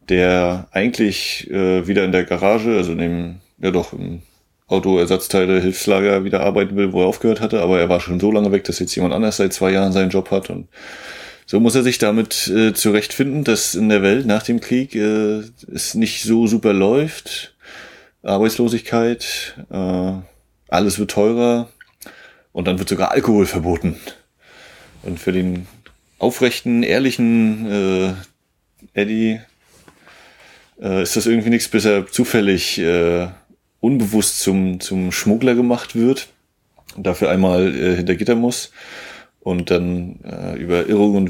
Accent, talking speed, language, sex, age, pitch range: German, 155 wpm, German, male, 30-49, 90-110 Hz